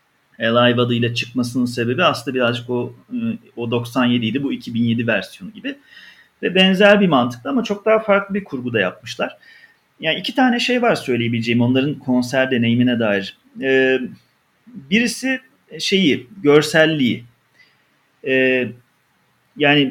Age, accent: 40-59, native